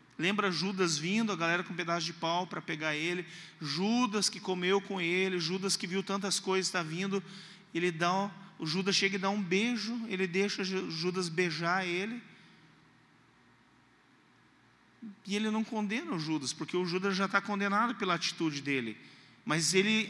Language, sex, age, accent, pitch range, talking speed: Portuguese, male, 40-59, Brazilian, 155-195 Hz, 160 wpm